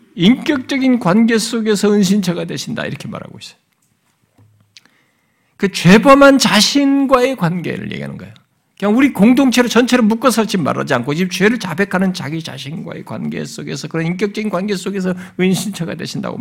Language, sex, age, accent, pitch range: Korean, male, 50-69, native, 140-210 Hz